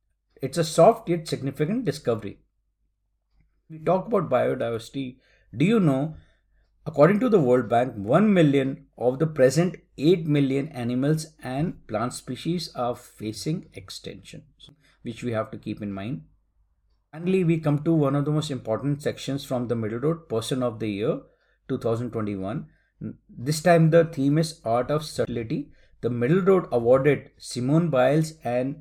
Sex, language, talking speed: male, English, 150 wpm